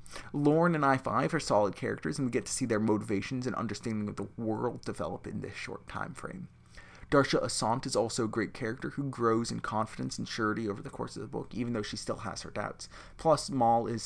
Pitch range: 105-135 Hz